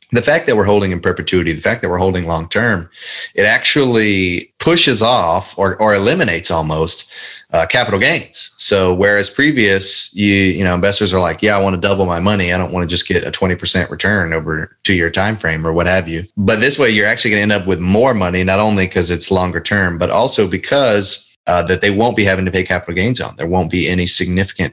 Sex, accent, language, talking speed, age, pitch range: male, American, English, 235 wpm, 30-49, 90-105 Hz